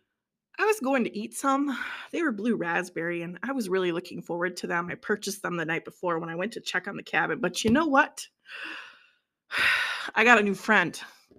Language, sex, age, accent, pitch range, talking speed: English, female, 20-39, American, 195-290 Hz, 215 wpm